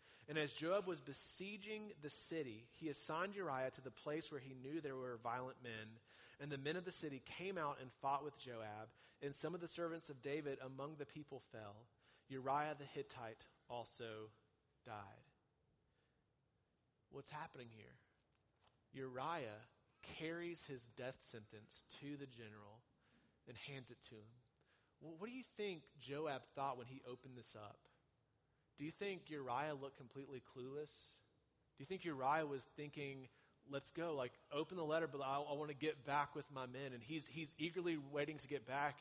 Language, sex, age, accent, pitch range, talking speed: English, male, 30-49, American, 125-155 Hz, 170 wpm